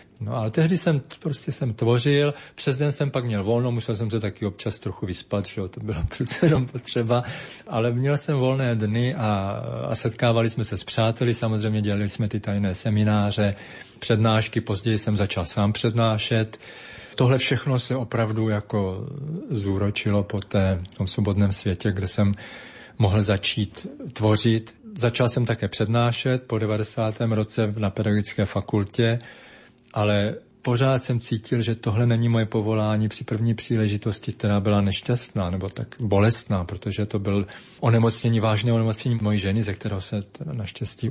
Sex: male